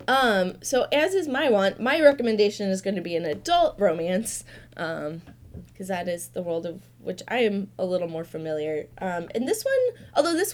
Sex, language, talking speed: female, English, 200 wpm